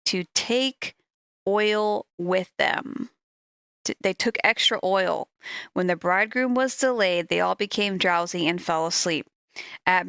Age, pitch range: 40-59, 180-225 Hz